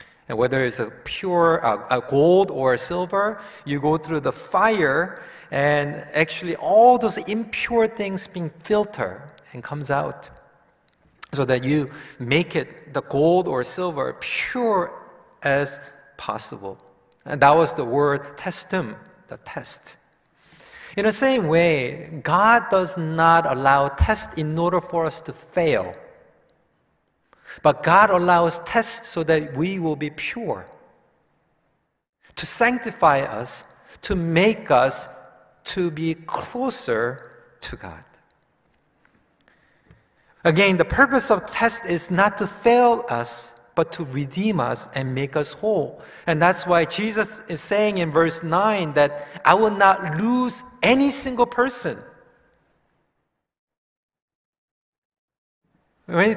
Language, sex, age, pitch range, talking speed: English, male, 40-59, 150-215 Hz, 125 wpm